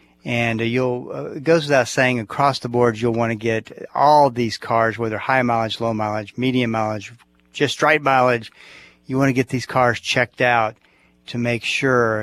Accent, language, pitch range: American, English, 110-130 Hz